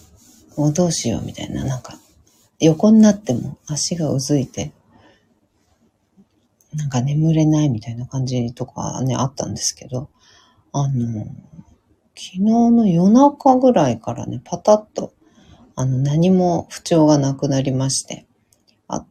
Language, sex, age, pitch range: Japanese, female, 40-59, 135-185 Hz